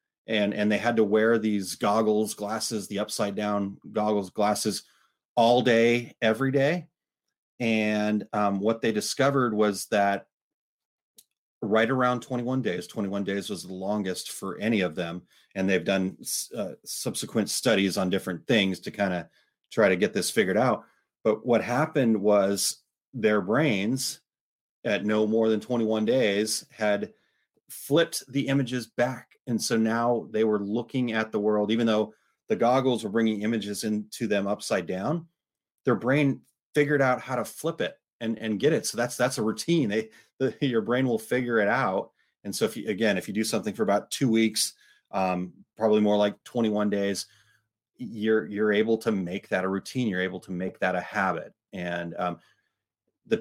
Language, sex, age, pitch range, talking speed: English, male, 30-49, 100-120 Hz, 175 wpm